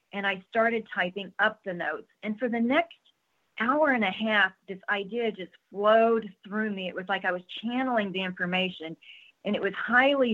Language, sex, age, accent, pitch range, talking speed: English, female, 40-59, American, 185-230 Hz, 190 wpm